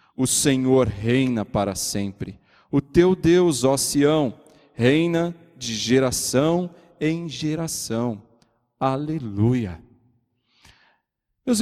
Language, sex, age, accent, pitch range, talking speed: Portuguese, male, 40-59, Brazilian, 120-180 Hz, 90 wpm